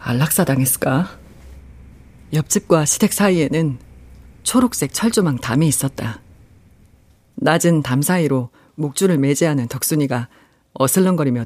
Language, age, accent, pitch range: Korean, 40-59, native, 115-175 Hz